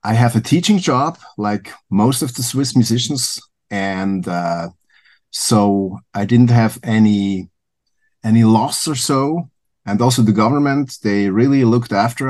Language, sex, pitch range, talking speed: English, male, 100-125 Hz, 145 wpm